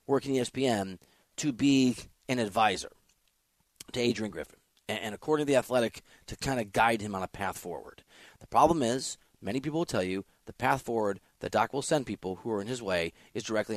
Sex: male